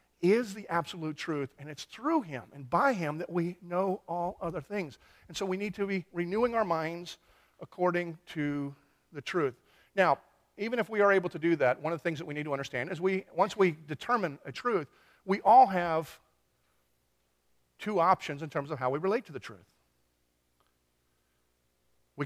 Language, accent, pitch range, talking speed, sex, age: English, American, 110-175 Hz, 190 wpm, male, 50-69